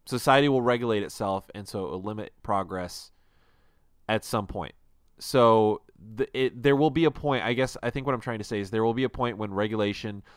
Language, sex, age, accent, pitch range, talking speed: English, male, 30-49, American, 95-120 Hz, 220 wpm